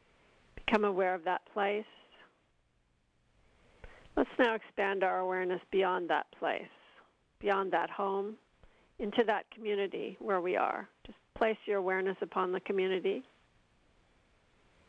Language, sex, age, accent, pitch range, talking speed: English, female, 50-69, American, 175-210 Hz, 115 wpm